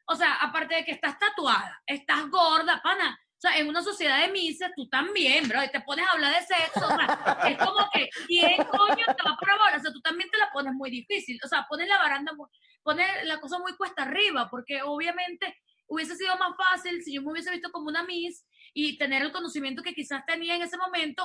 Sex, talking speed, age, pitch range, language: female, 235 wpm, 20-39, 260-340 Hz, Spanish